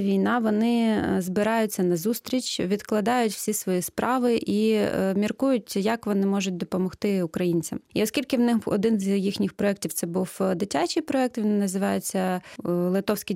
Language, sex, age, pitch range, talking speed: Russian, female, 20-39, 185-220 Hz, 145 wpm